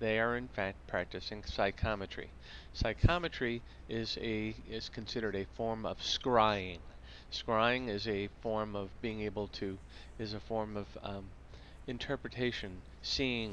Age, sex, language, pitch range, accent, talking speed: 40-59, male, English, 100-125 Hz, American, 135 wpm